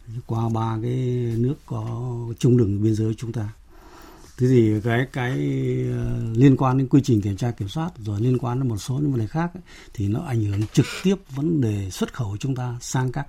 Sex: male